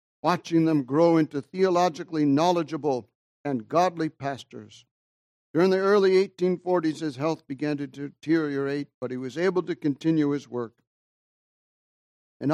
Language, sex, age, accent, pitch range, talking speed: English, male, 60-79, American, 130-165 Hz, 130 wpm